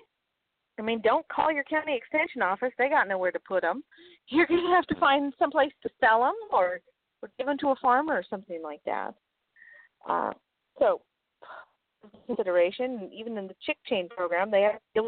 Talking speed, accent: 190 wpm, American